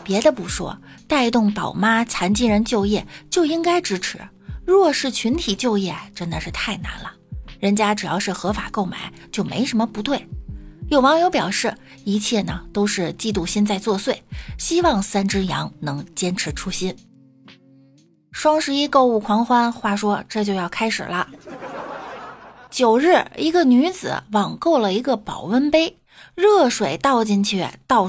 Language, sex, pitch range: Chinese, female, 185-265 Hz